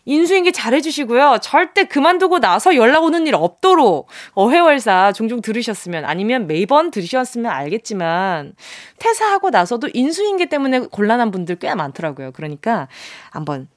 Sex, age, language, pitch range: female, 20-39, Korean, 225-345 Hz